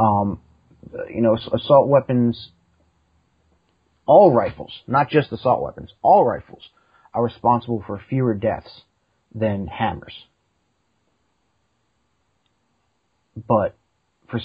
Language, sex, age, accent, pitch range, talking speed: English, male, 30-49, American, 100-120 Hz, 90 wpm